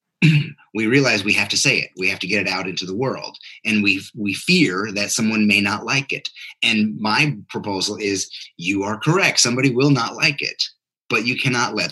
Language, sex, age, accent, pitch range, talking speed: English, male, 30-49, American, 95-125 Hz, 210 wpm